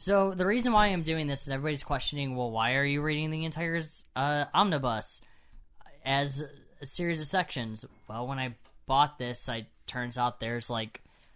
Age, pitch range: 10-29, 105-145 Hz